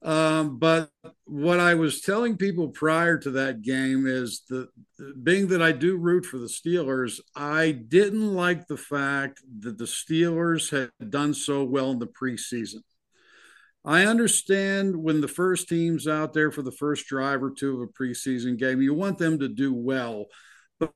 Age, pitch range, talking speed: 60-79, 130-160 Hz, 180 wpm